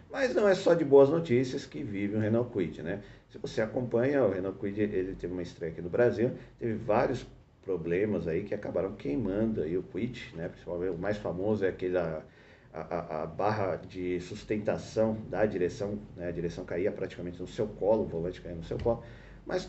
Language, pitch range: Portuguese, 95-140 Hz